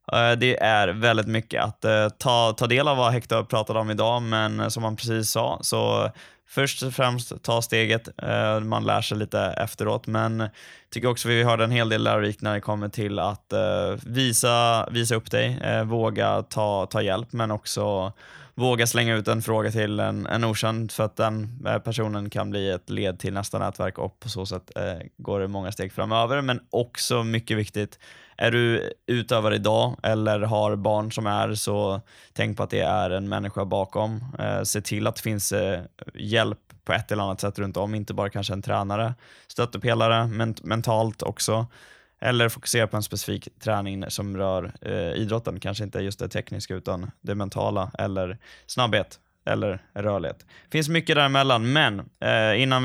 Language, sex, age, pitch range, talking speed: Swedish, male, 20-39, 105-120 Hz, 180 wpm